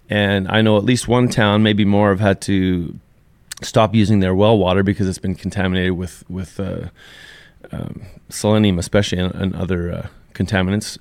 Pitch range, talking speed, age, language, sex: 95-110 Hz, 170 wpm, 30-49, English, male